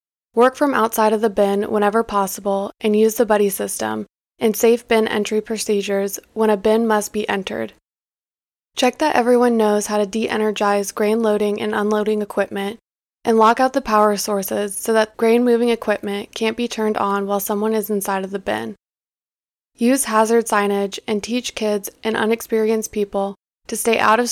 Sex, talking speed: female, 175 wpm